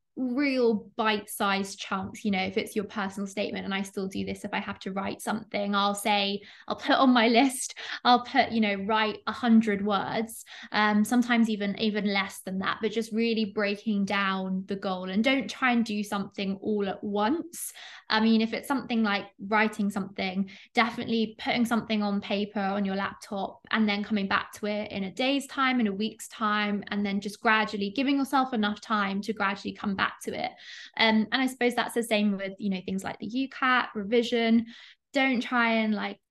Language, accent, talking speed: English, British, 205 wpm